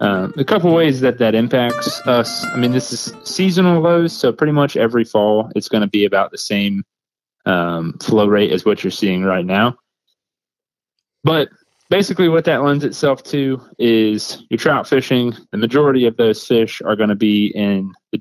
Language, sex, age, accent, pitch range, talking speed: English, male, 30-49, American, 105-140 Hz, 190 wpm